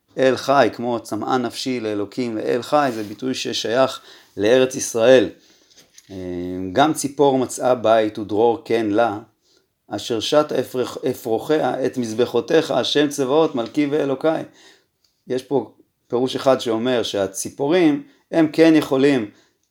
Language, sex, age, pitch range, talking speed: Hebrew, male, 30-49, 110-140 Hz, 115 wpm